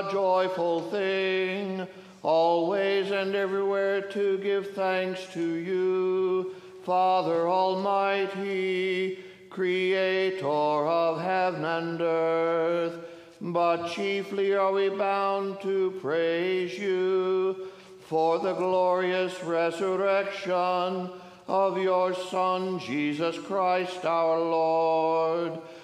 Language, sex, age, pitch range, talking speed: English, male, 60-79, 170-195 Hz, 85 wpm